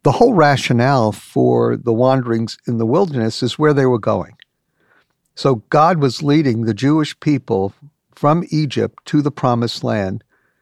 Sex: male